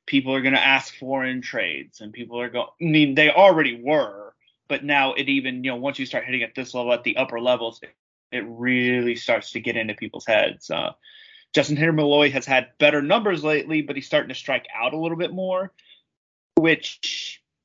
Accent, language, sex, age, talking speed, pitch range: American, English, male, 30-49, 210 wpm, 125-150 Hz